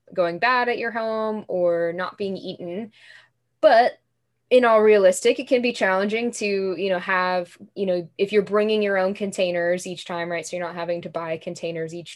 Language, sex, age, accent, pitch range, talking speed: English, female, 10-29, American, 170-205 Hz, 200 wpm